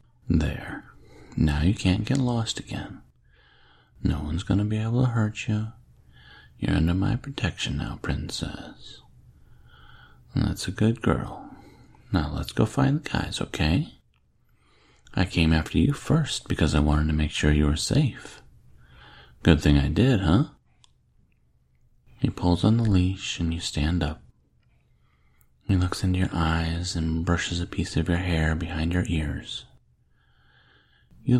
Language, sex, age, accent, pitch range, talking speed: English, male, 40-59, American, 75-100 Hz, 145 wpm